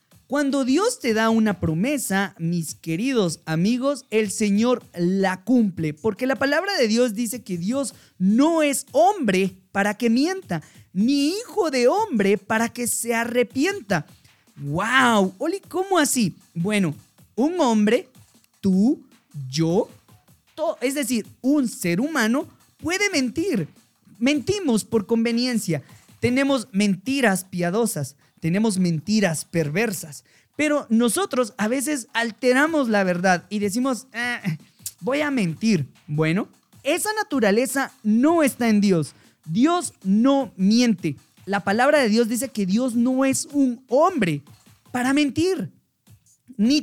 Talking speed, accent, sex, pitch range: 125 wpm, Mexican, male, 190-275 Hz